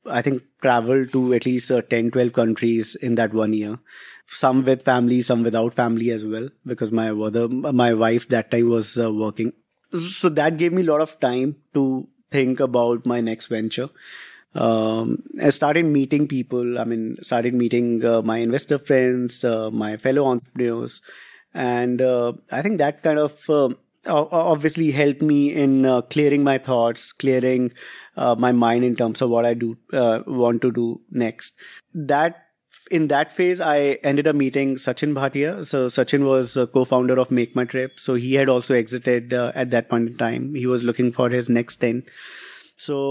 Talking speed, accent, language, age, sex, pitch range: 185 wpm, Indian, English, 30-49, male, 120-140 Hz